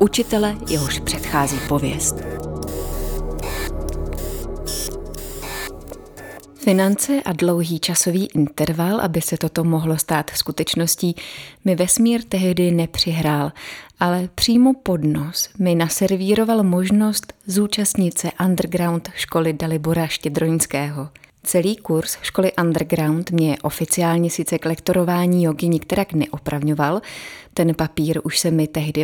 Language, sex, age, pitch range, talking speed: Czech, female, 30-49, 155-190 Hz, 100 wpm